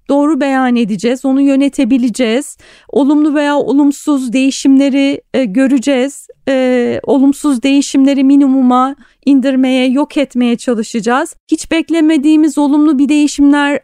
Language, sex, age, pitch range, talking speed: Turkish, female, 40-59, 250-290 Hz, 105 wpm